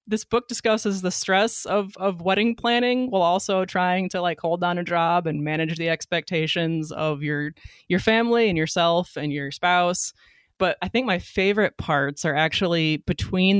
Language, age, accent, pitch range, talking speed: English, 20-39, American, 160-195 Hz, 175 wpm